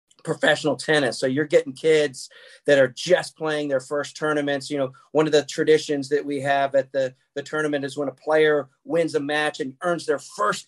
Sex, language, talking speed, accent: male, English, 210 wpm, American